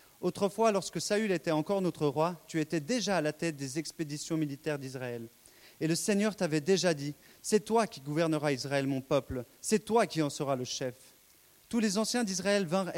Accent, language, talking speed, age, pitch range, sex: French, French, 210 wpm, 40-59, 130-170 Hz, male